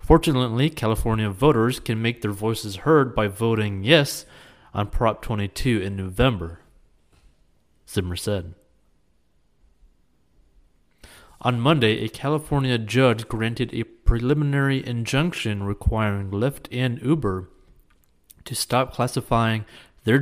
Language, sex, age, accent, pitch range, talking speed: English, male, 30-49, American, 105-130 Hz, 105 wpm